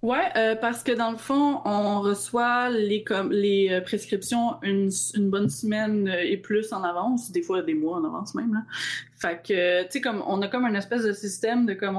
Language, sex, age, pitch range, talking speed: French, female, 20-39, 190-235 Hz, 230 wpm